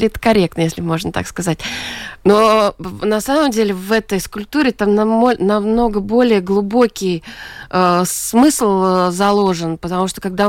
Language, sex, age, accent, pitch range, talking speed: Russian, female, 20-39, native, 185-225 Hz, 130 wpm